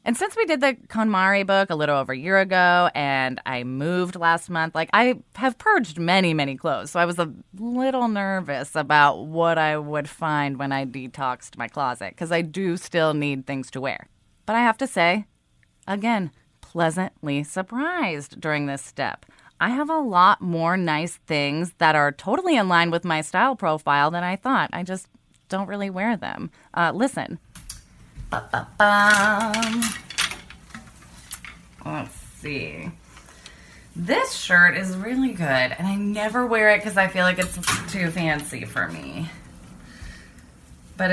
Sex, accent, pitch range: female, American, 155-210 Hz